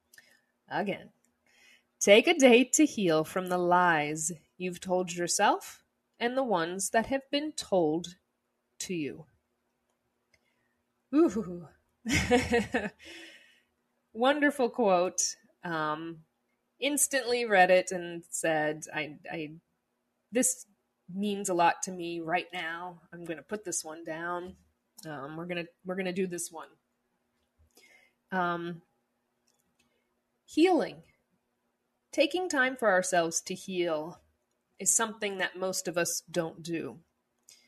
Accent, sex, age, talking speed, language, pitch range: American, female, 20-39, 115 wpm, English, 160-220 Hz